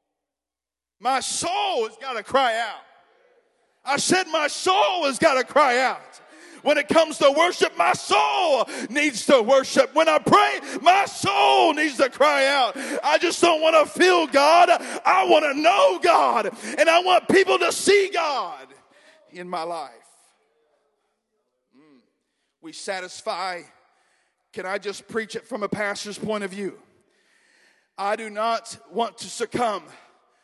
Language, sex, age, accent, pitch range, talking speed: English, male, 40-59, American, 245-345 Hz, 150 wpm